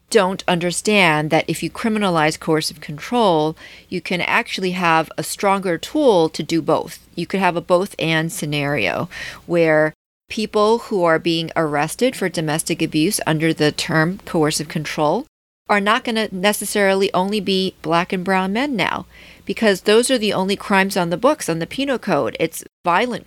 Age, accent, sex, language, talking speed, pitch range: 40-59, American, female, English, 170 wpm, 155-195 Hz